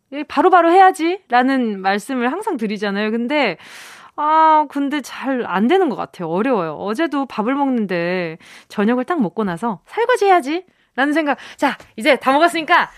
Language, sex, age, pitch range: Korean, female, 20-39, 220-335 Hz